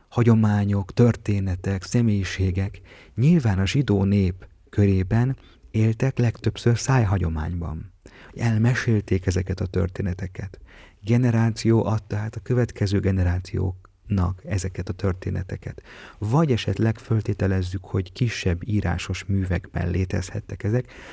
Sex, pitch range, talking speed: male, 95-110 Hz, 95 wpm